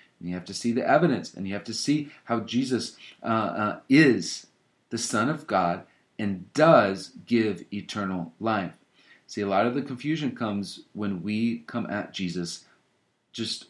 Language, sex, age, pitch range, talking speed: English, male, 40-59, 90-120 Hz, 165 wpm